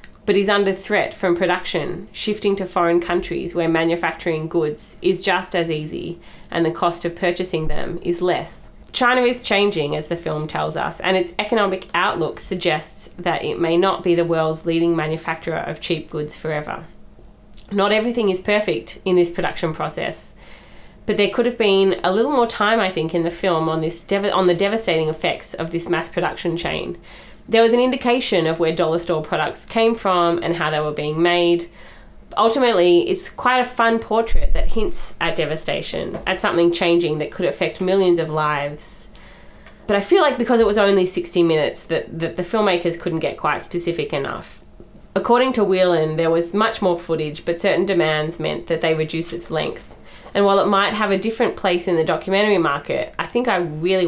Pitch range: 165-200 Hz